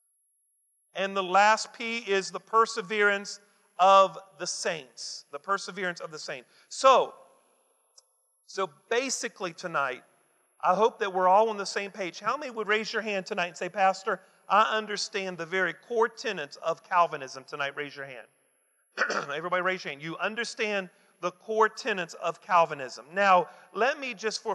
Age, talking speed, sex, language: 40-59, 160 wpm, male, English